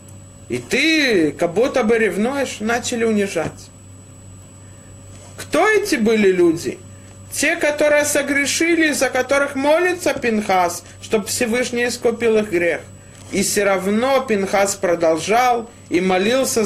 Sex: male